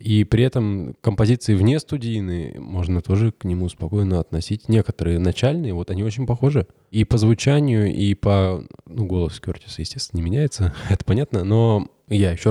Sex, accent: male, native